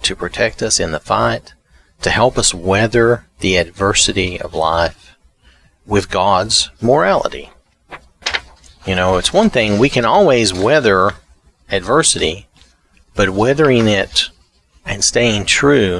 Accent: American